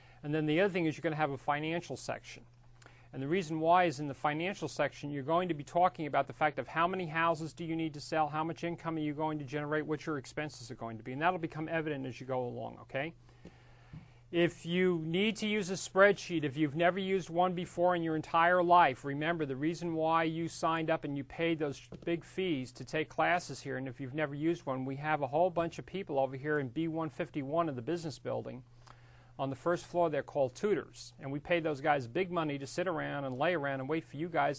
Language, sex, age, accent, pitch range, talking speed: English, male, 40-59, American, 135-165 Hz, 250 wpm